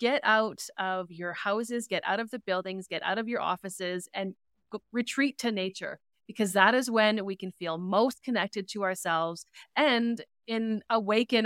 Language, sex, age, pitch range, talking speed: English, female, 30-49, 190-230 Hz, 180 wpm